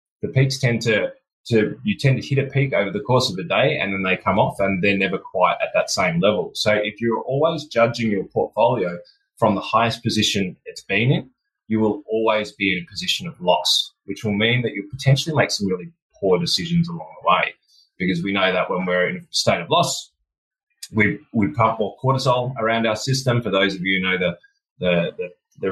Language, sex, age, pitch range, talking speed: English, male, 20-39, 100-140 Hz, 225 wpm